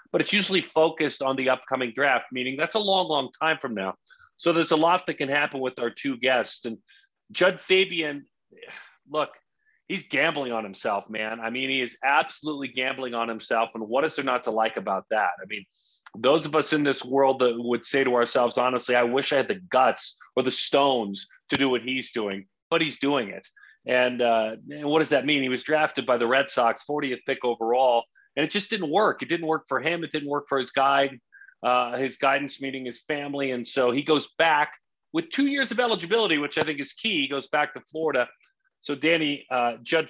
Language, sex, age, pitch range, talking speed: English, male, 40-59, 125-160 Hz, 220 wpm